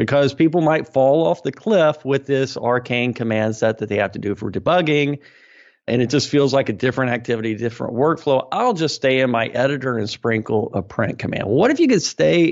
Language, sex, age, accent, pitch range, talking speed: English, male, 50-69, American, 120-170 Hz, 215 wpm